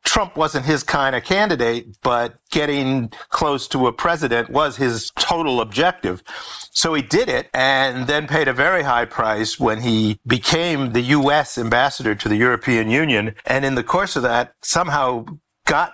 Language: English